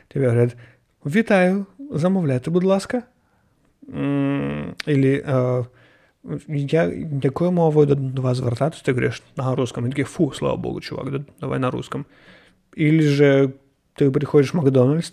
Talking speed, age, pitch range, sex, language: 125 wpm, 30-49, 125-150 Hz, male, Ukrainian